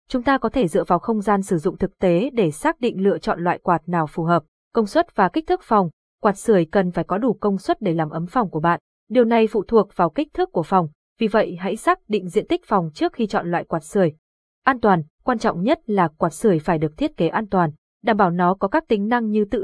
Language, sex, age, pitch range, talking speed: Vietnamese, female, 20-39, 180-235 Hz, 270 wpm